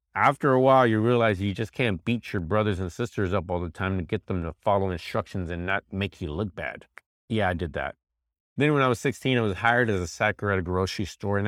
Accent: American